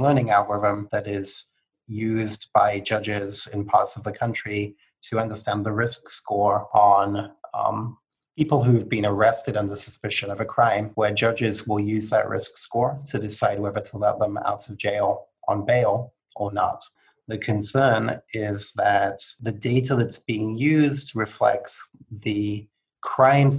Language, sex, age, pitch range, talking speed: English, male, 30-49, 105-120 Hz, 155 wpm